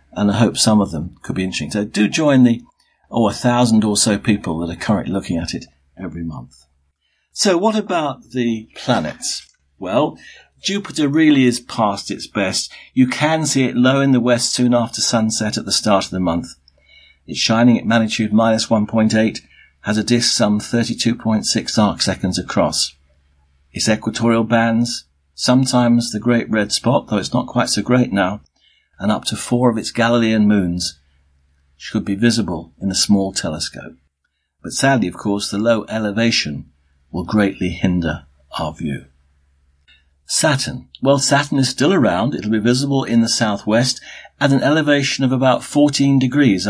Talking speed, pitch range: 170 wpm, 85-120 Hz